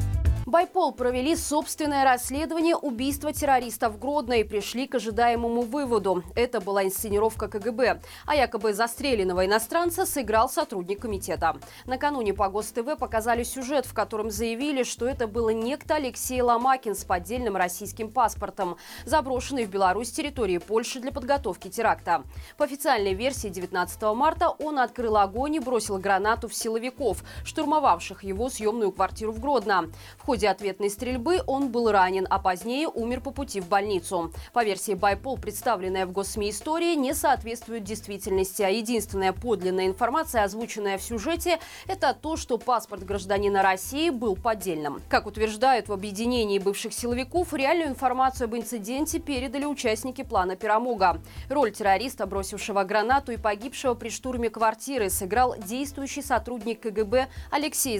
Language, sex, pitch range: Russian, female, 205-270 Hz